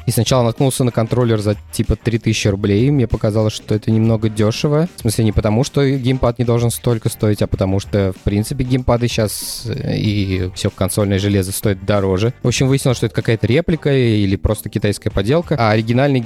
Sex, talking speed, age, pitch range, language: male, 190 wpm, 20-39, 105-125 Hz, Russian